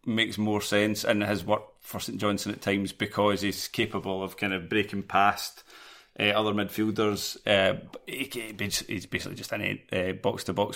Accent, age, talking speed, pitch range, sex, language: British, 30-49, 165 wpm, 100-110 Hz, male, English